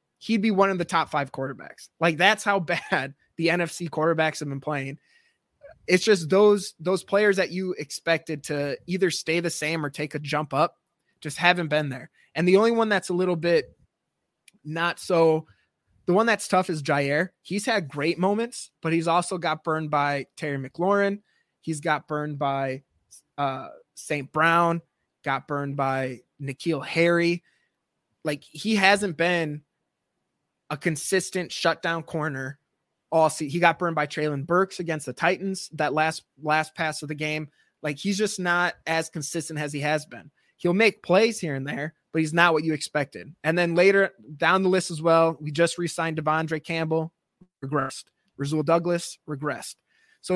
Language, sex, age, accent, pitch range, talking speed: English, male, 20-39, American, 150-180 Hz, 180 wpm